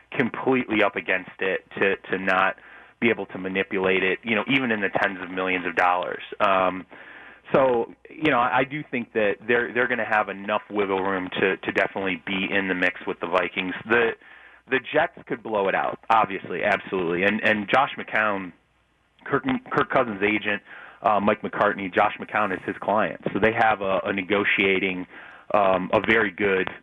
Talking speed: 185 wpm